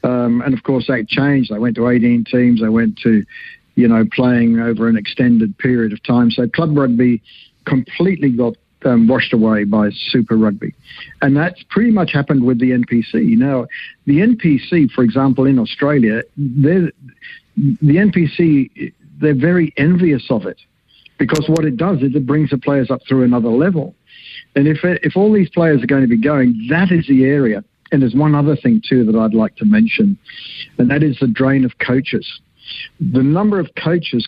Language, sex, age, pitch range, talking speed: English, male, 60-79, 120-155 Hz, 185 wpm